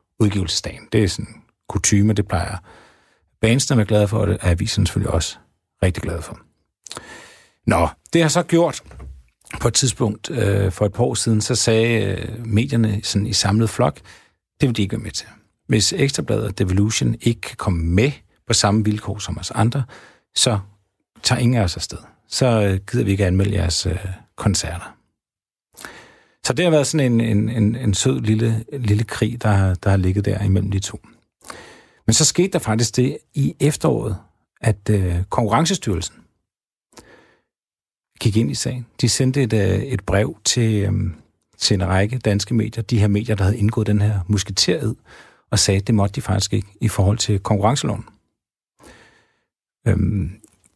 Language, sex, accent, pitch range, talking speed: Danish, male, native, 100-115 Hz, 165 wpm